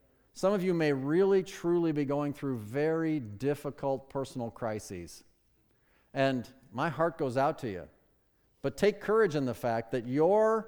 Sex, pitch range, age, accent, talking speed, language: male, 135-195 Hz, 50-69, American, 155 wpm, English